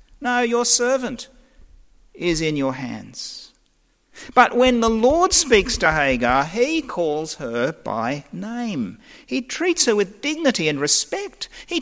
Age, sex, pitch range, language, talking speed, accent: 50-69, male, 165-250 Hz, English, 135 wpm, Australian